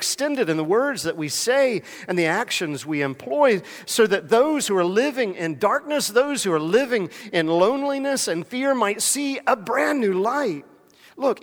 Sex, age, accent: male, 50-69, American